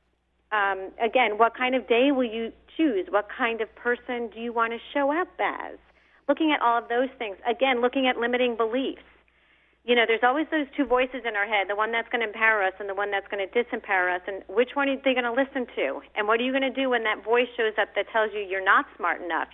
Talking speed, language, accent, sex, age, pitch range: 260 wpm, English, American, female, 40-59, 205-265 Hz